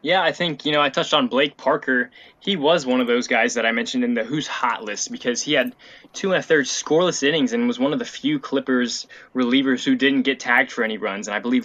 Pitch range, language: 125-180 Hz, English